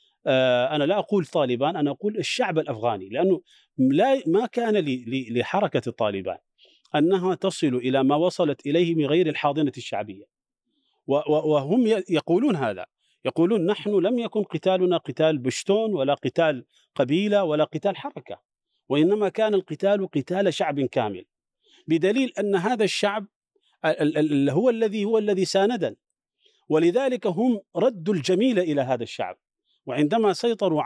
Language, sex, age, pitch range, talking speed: Arabic, male, 40-59, 145-205 Hz, 125 wpm